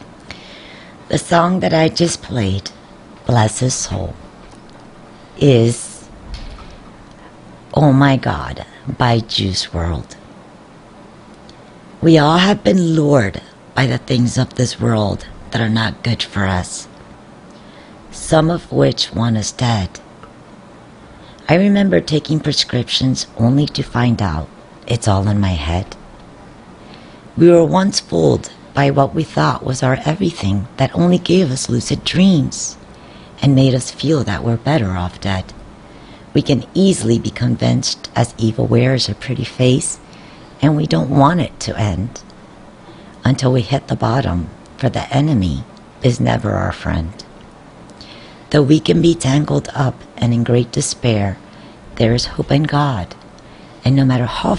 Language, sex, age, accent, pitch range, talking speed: English, female, 60-79, American, 105-145 Hz, 140 wpm